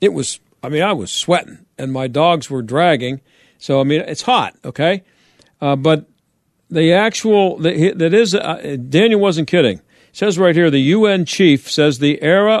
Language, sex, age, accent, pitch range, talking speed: English, male, 50-69, American, 150-200 Hz, 185 wpm